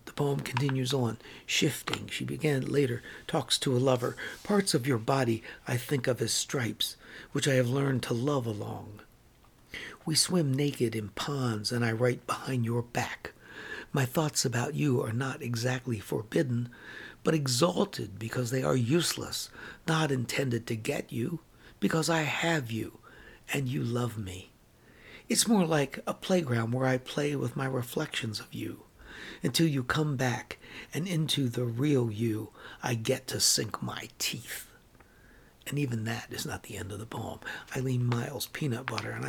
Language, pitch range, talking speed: English, 120-145 Hz, 165 wpm